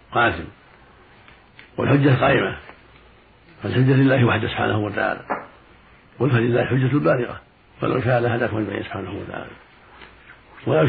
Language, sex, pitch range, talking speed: Arabic, male, 115-130 Hz, 105 wpm